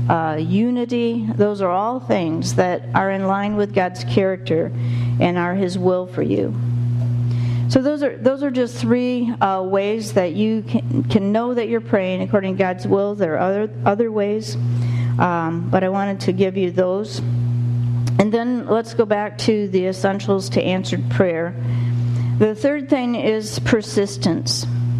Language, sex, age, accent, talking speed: English, female, 50-69, American, 165 wpm